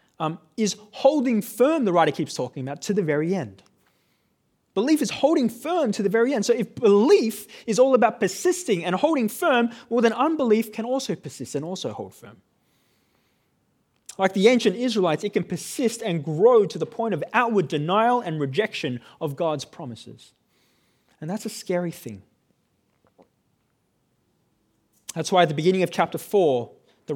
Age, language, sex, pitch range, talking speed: 20-39, English, male, 145-215 Hz, 165 wpm